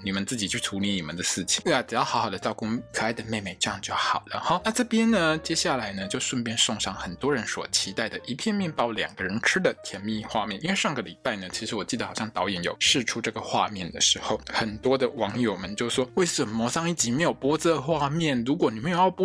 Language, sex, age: Chinese, male, 20-39